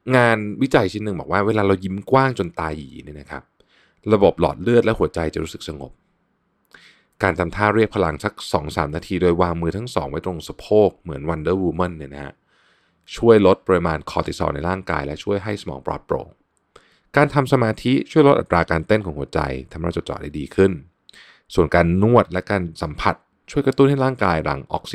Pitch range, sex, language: 80-105 Hz, male, Thai